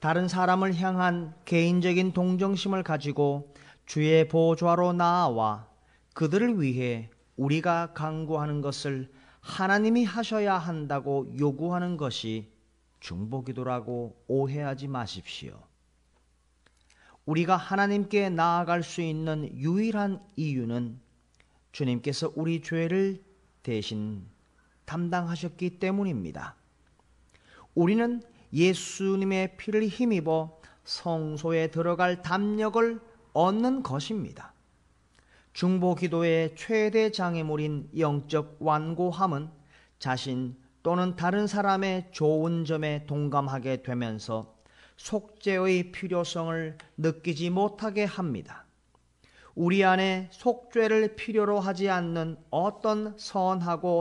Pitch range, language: 135-190 Hz, Korean